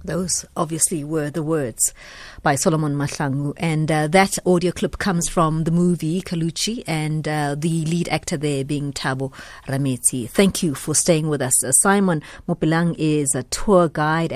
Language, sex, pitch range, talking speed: English, female, 155-180 Hz, 165 wpm